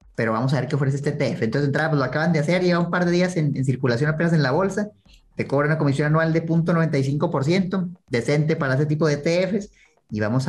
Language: Spanish